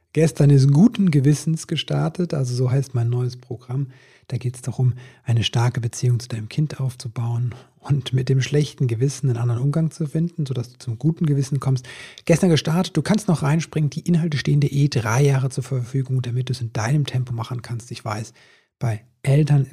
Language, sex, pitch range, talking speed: German, male, 120-145 Hz, 200 wpm